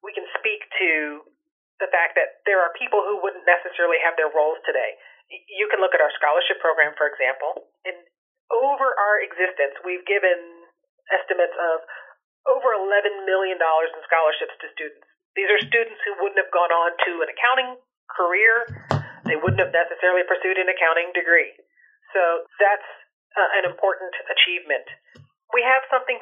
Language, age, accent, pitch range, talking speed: English, 40-59, American, 175-270 Hz, 160 wpm